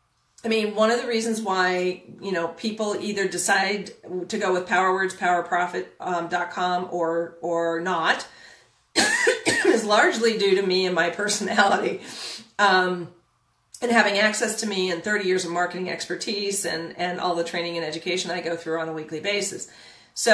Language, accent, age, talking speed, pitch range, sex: English, American, 40-59, 160 wpm, 175-210 Hz, female